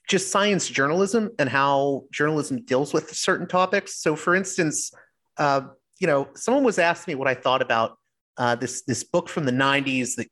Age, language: 30-49, English